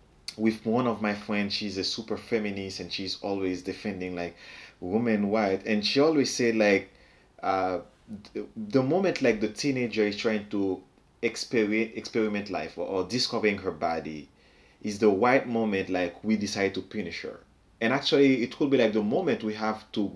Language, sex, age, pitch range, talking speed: English, male, 30-49, 100-130 Hz, 175 wpm